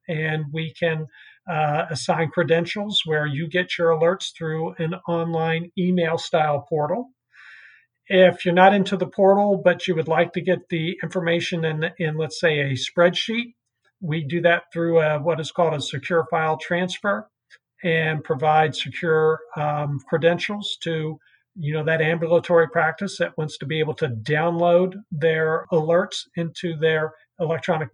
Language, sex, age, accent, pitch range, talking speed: English, male, 50-69, American, 155-180 Hz, 145 wpm